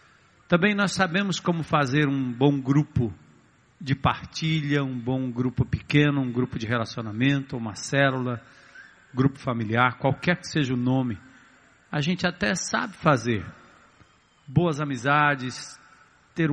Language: Portuguese